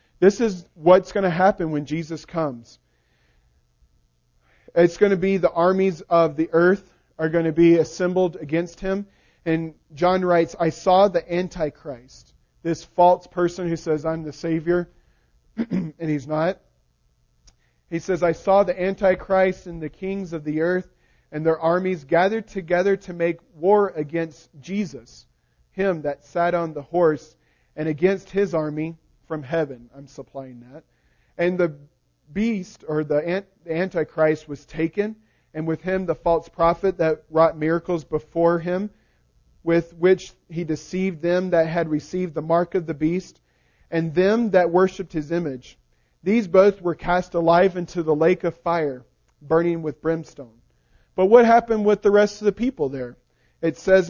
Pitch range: 155-185 Hz